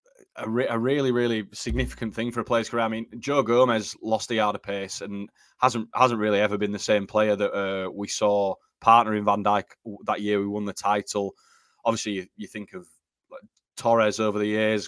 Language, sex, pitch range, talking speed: English, male, 105-120 Hz, 210 wpm